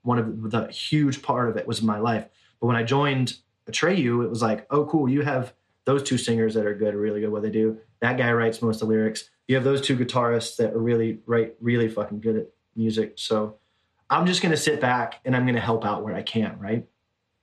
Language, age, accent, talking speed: English, 20-39, American, 250 wpm